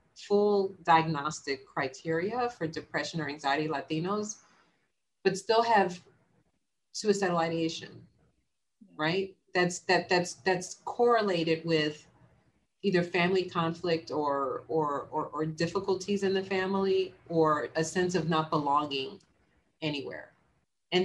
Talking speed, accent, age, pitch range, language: 110 wpm, American, 40-59, 165-200 Hz, English